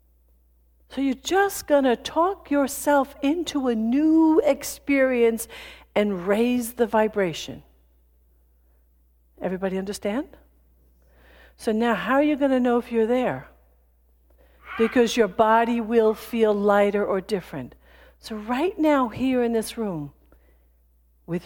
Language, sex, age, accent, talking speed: English, female, 60-79, American, 125 wpm